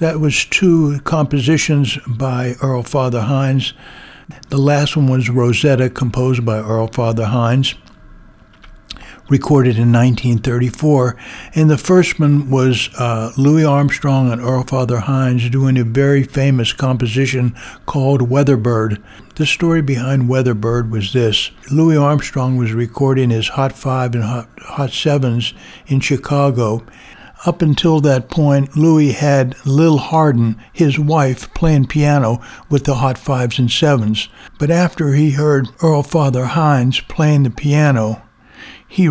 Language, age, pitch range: English, 60-79, 120-145 Hz